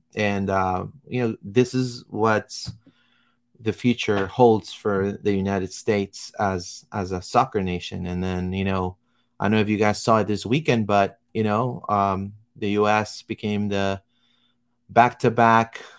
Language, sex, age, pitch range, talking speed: English, male, 30-49, 105-125 Hz, 160 wpm